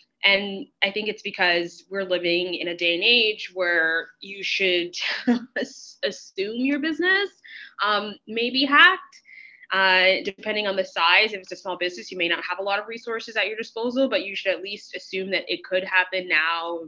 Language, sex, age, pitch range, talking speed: English, female, 20-39, 170-200 Hz, 190 wpm